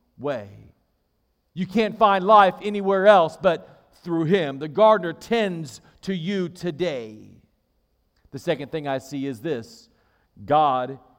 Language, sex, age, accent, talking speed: English, male, 50-69, American, 130 wpm